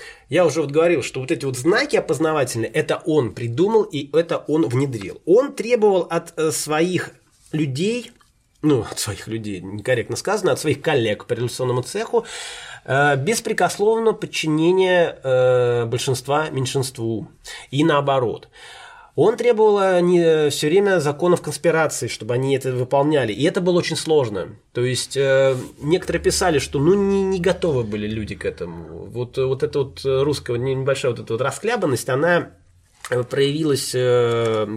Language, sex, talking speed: Russian, male, 145 wpm